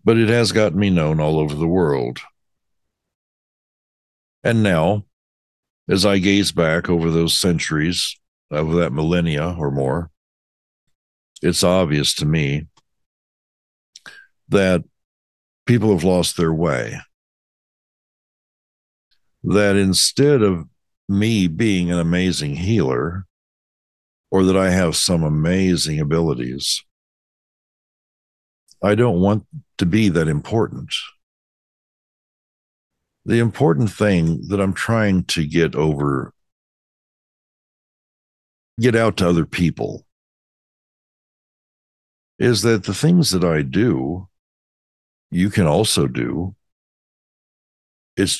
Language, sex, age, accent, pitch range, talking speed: English, male, 60-79, American, 75-100 Hz, 100 wpm